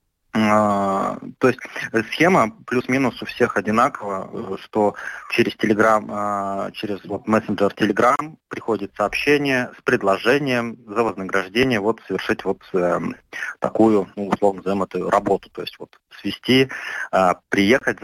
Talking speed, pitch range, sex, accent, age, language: 110 wpm, 95-110 Hz, male, native, 20-39, Russian